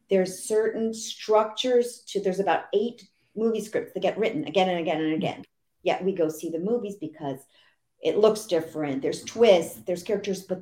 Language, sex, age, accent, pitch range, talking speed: English, female, 50-69, American, 165-220 Hz, 180 wpm